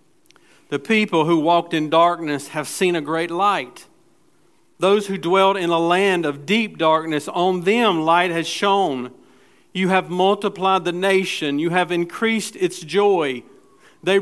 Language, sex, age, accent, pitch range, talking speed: English, male, 50-69, American, 155-190 Hz, 150 wpm